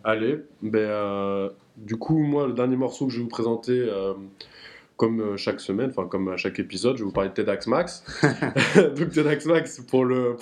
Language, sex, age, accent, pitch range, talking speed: French, male, 20-39, French, 100-130 Hz, 205 wpm